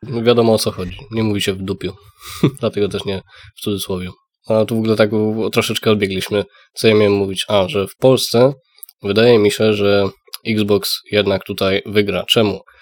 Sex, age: male, 20-39